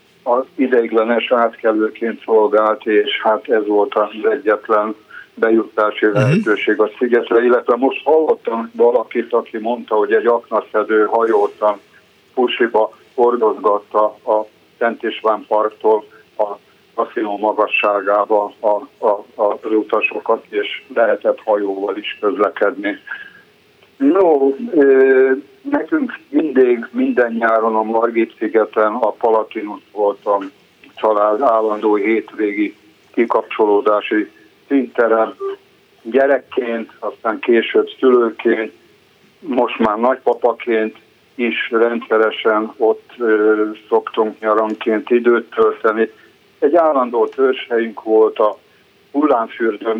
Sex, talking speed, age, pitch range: male, 95 wpm, 60-79, 110-145 Hz